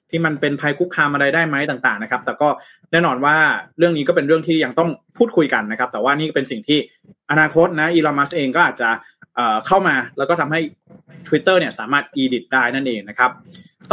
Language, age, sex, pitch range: Thai, 20-39, male, 140-180 Hz